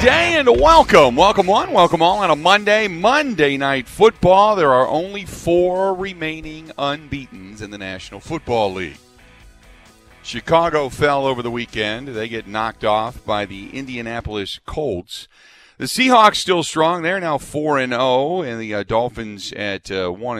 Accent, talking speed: American, 145 wpm